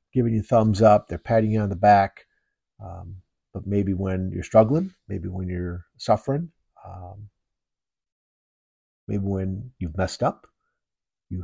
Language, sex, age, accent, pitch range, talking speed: English, male, 50-69, American, 95-145 Hz, 140 wpm